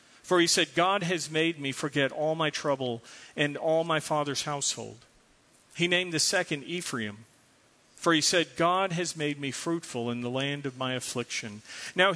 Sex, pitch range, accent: male, 135-170 Hz, American